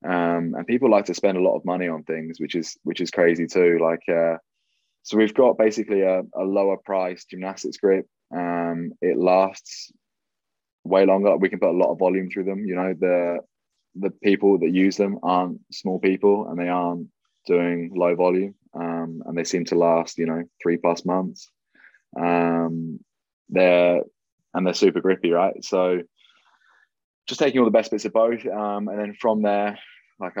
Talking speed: 185 wpm